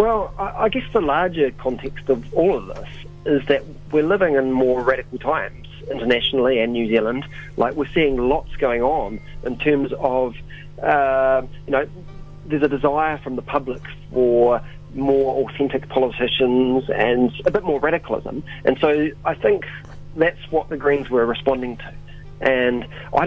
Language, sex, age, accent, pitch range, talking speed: English, male, 40-59, Australian, 125-145 Hz, 160 wpm